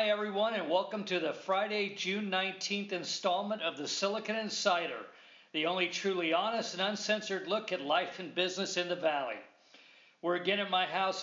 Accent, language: American, English